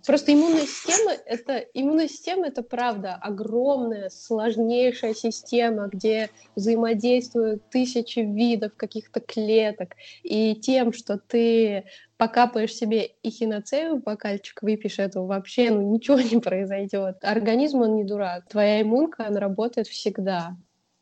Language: Russian